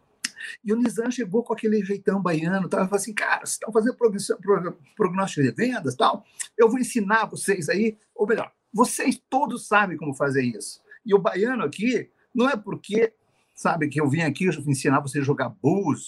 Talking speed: 190 wpm